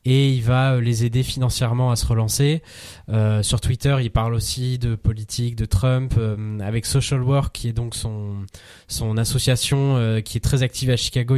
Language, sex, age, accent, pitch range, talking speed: French, male, 20-39, French, 105-130 Hz, 190 wpm